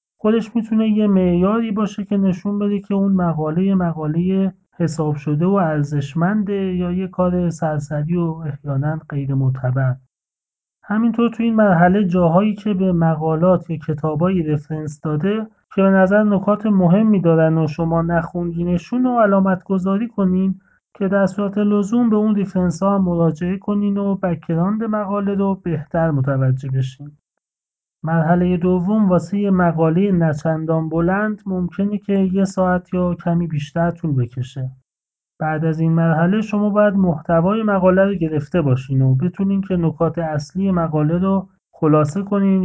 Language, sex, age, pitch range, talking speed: Persian, male, 30-49, 160-195 Hz, 140 wpm